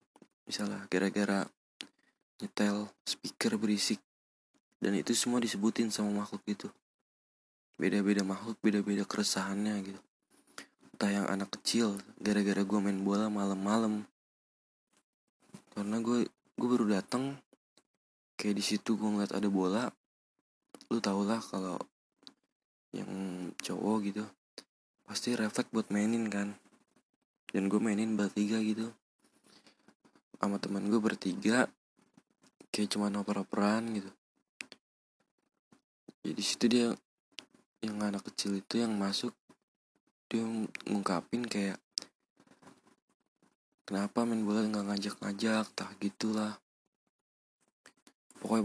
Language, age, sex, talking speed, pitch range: Indonesian, 20-39, male, 105 wpm, 100-110 Hz